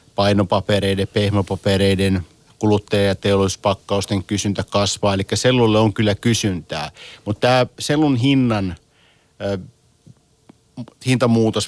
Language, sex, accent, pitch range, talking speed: Finnish, male, native, 95-110 Hz, 85 wpm